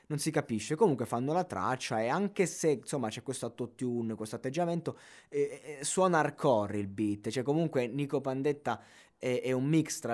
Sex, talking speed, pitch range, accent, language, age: male, 190 wpm, 110-150 Hz, native, Italian, 20-39